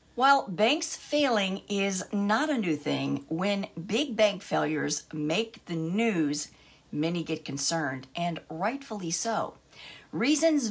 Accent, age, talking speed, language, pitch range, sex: American, 50-69, 125 wpm, English, 150-215 Hz, female